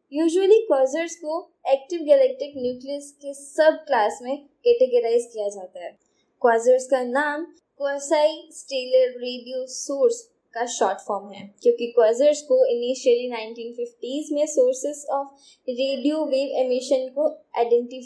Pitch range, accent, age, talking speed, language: 250-305 Hz, native, 20-39, 85 wpm, Hindi